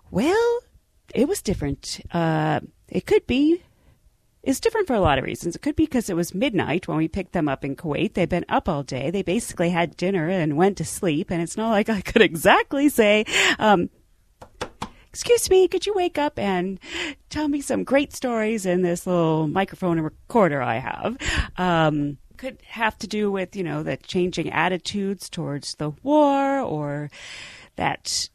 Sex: female